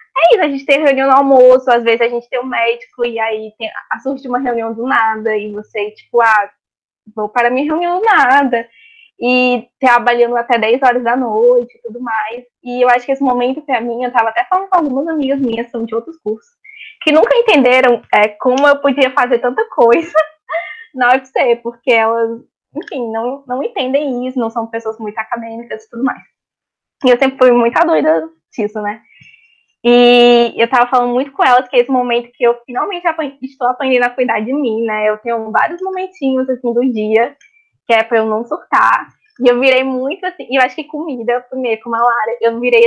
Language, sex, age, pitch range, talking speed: Portuguese, female, 10-29, 235-280 Hz, 210 wpm